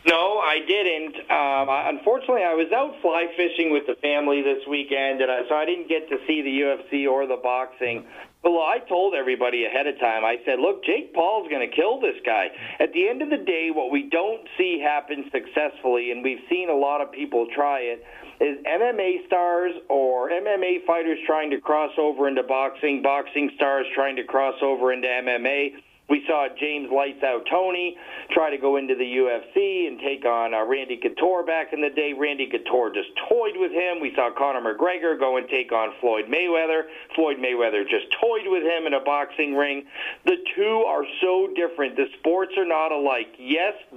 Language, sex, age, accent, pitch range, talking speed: English, male, 50-69, American, 135-180 Hz, 200 wpm